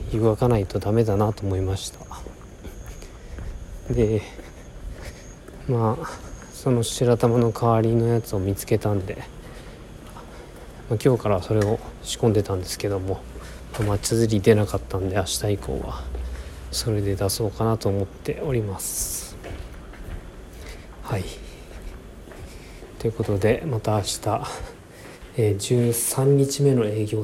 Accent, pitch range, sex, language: native, 100-120 Hz, male, Japanese